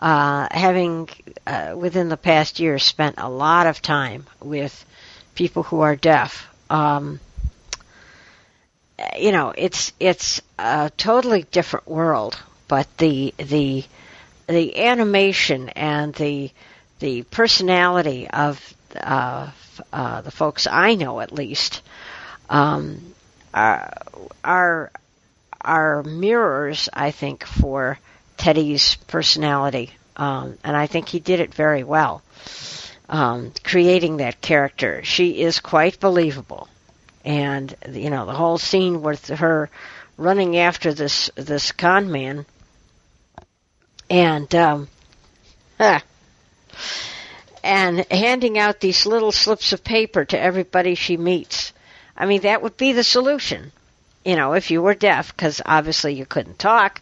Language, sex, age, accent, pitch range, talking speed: English, female, 60-79, American, 145-180 Hz, 125 wpm